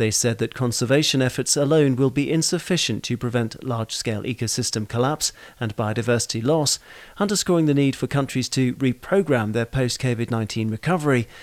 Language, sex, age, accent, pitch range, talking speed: English, male, 40-59, British, 115-140 Hz, 140 wpm